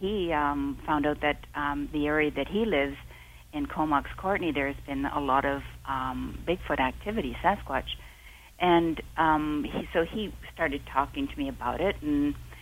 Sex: female